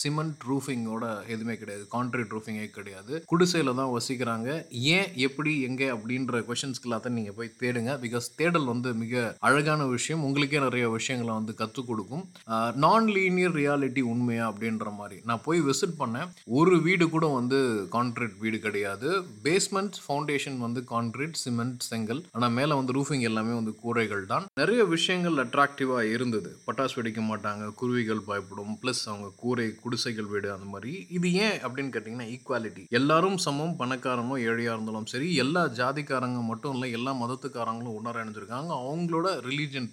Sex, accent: male, native